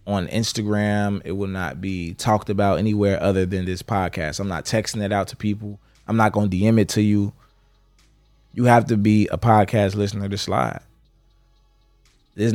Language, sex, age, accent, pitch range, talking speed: English, male, 20-39, American, 95-110 Hz, 180 wpm